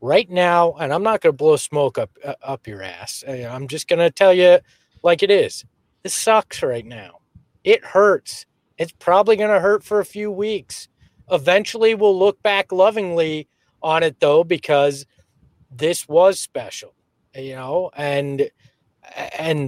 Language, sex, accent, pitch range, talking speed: English, male, American, 160-225 Hz, 165 wpm